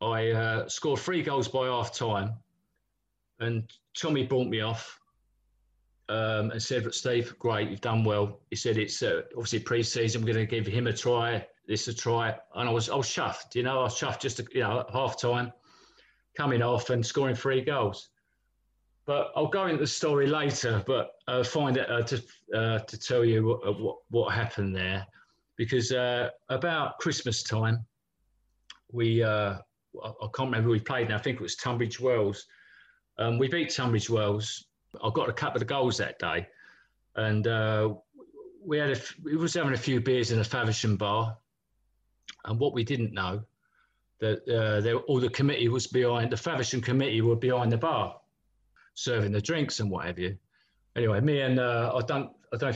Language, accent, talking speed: English, British, 190 wpm